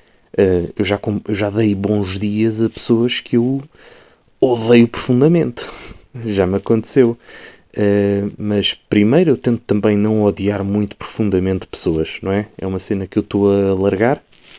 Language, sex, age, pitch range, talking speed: Portuguese, male, 20-39, 100-115 Hz, 145 wpm